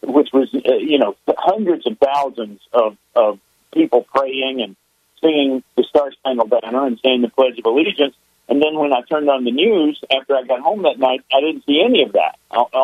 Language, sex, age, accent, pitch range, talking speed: English, male, 50-69, American, 125-170 Hz, 205 wpm